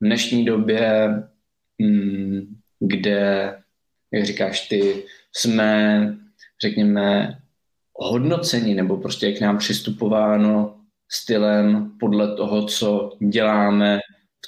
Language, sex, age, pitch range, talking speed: Czech, male, 20-39, 100-110 Hz, 85 wpm